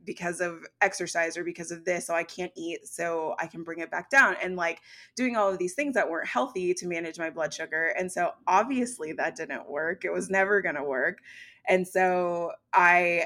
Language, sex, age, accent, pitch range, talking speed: English, female, 20-39, American, 165-180 Hz, 215 wpm